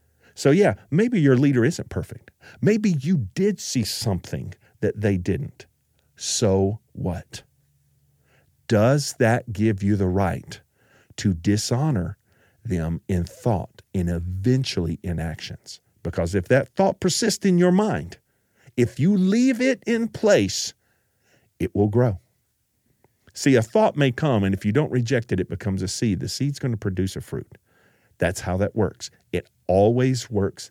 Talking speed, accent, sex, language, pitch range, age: 150 wpm, American, male, English, 105-160 Hz, 50-69